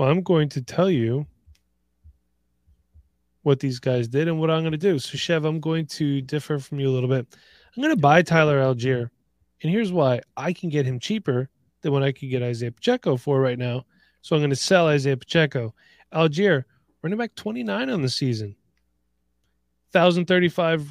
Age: 20-39